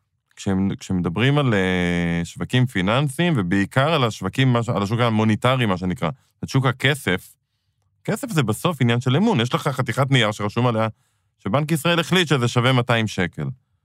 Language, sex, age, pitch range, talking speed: Hebrew, male, 20-39, 100-135 Hz, 155 wpm